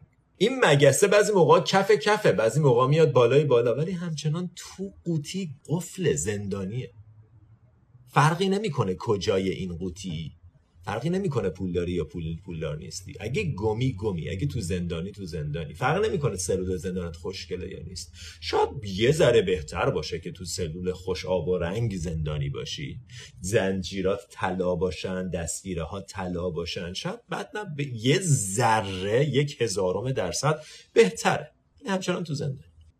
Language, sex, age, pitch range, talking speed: Persian, male, 30-49, 95-155 Hz, 140 wpm